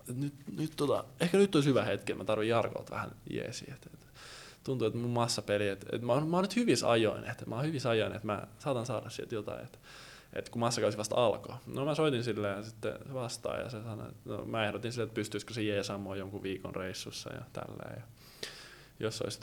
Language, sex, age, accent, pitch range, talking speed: Finnish, male, 20-39, native, 105-125 Hz, 185 wpm